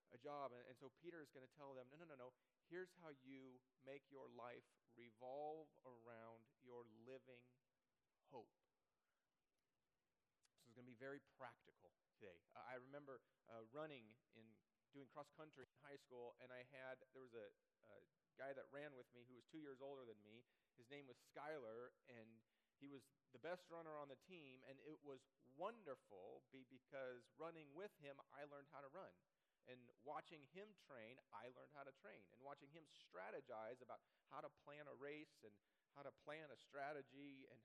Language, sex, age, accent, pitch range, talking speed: English, male, 40-59, American, 120-150 Hz, 185 wpm